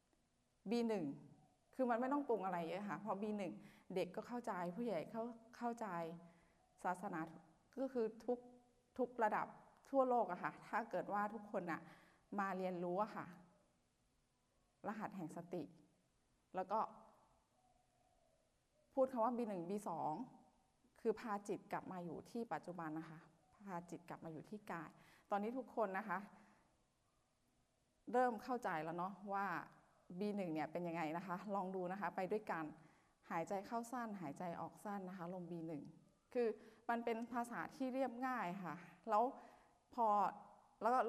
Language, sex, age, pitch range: Thai, female, 20-39, 165-220 Hz